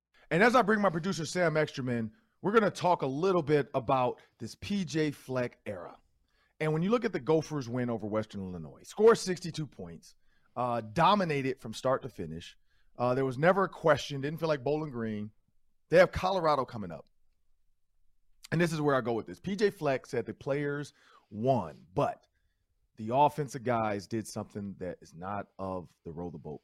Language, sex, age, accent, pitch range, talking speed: English, male, 40-59, American, 100-155 Hz, 190 wpm